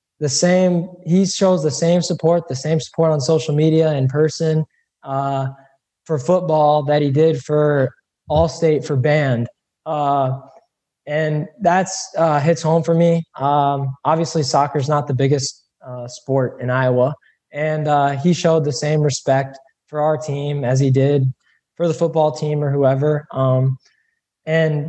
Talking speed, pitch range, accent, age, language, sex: 160 wpm, 140-160 Hz, American, 20-39, English, male